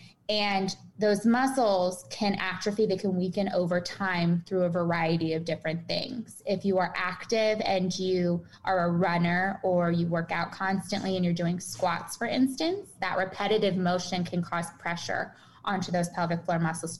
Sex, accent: female, American